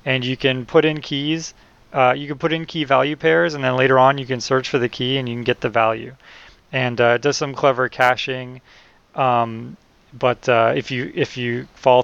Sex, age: male, 30-49